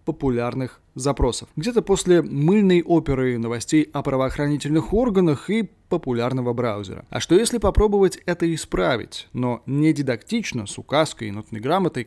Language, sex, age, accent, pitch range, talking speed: Russian, male, 20-39, native, 125-175 Hz, 135 wpm